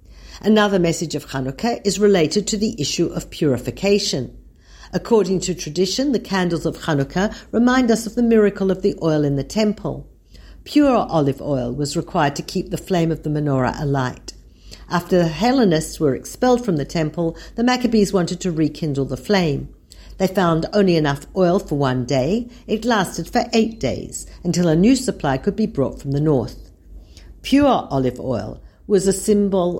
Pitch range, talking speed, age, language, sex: 145-205 Hz, 175 wpm, 50-69, Hebrew, female